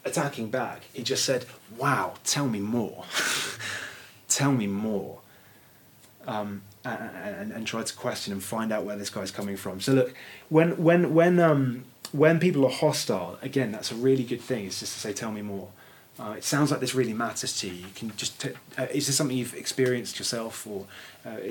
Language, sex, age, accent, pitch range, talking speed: English, male, 20-39, British, 105-135 Hz, 200 wpm